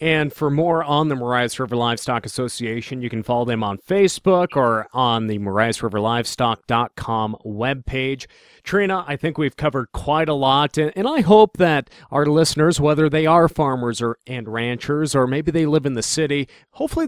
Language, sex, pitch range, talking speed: English, male, 115-150 Hz, 170 wpm